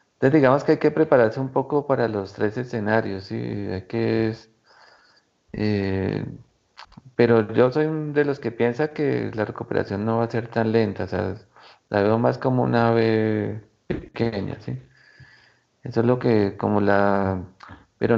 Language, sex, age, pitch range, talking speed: Spanish, male, 40-59, 105-130 Hz, 170 wpm